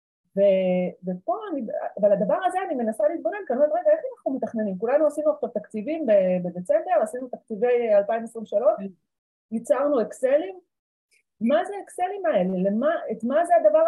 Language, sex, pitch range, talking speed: Hebrew, female, 200-305 Hz, 145 wpm